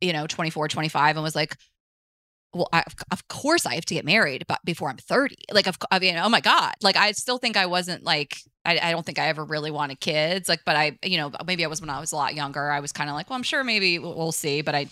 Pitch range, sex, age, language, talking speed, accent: 155-190 Hz, female, 20-39, English, 280 wpm, American